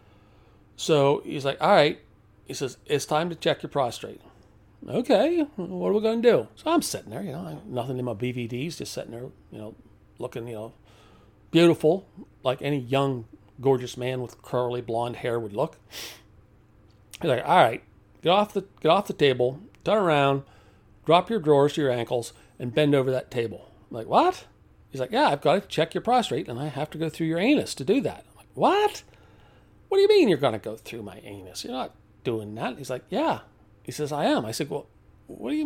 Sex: male